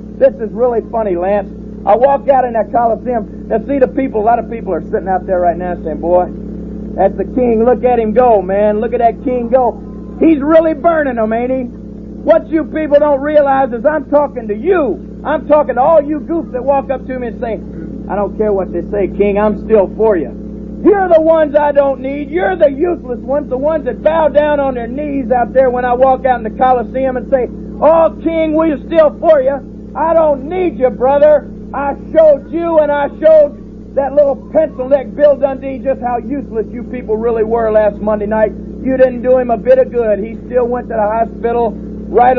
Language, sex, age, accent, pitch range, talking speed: English, male, 50-69, American, 210-275 Hz, 225 wpm